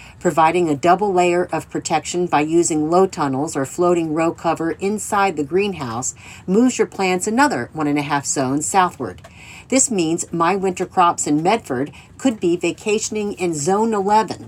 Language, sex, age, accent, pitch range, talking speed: English, female, 50-69, American, 145-190 Hz, 155 wpm